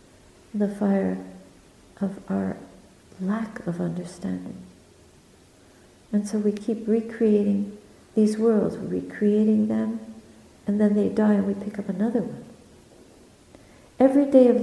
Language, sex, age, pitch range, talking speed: English, female, 60-79, 190-220 Hz, 120 wpm